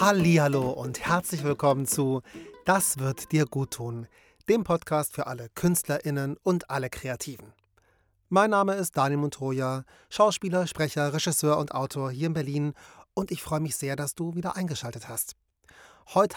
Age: 30-49